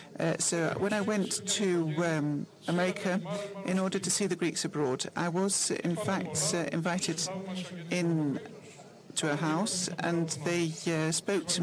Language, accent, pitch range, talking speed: Greek, British, 155-190 Hz, 150 wpm